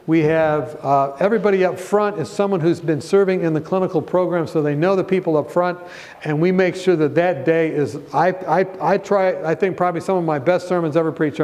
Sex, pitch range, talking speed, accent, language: male, 145-185 Hz, 230 wpm, American, English